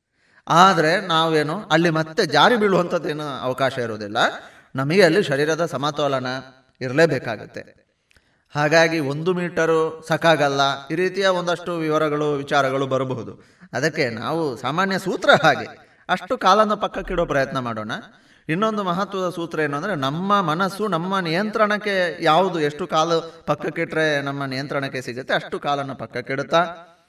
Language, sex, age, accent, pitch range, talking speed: Kannada, male, 30-49, native, 135-180 Hz, 115 wpm